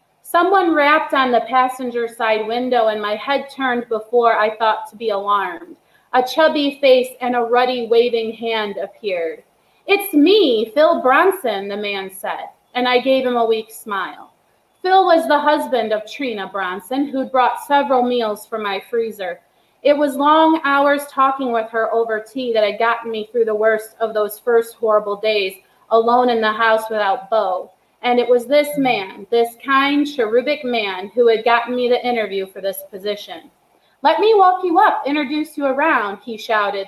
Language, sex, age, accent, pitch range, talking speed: English, female, 30-49, American, 220-270 Hz, 175 wpm